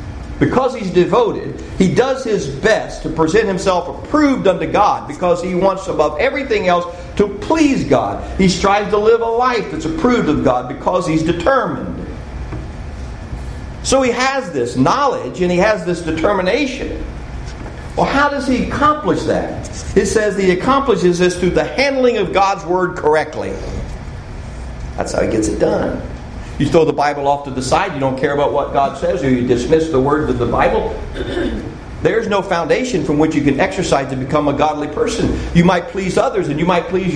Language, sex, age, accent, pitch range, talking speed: English, male, 50-69, American, 145-205 Hz, 180 wpm